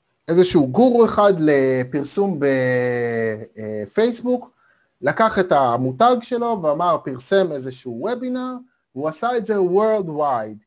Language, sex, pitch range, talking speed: Hebrew, male, 140-210 Hz, 100 wpm